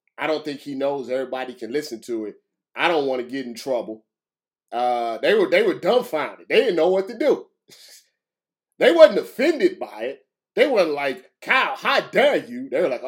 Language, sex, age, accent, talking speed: English, male, 30-49, American, 200 wpm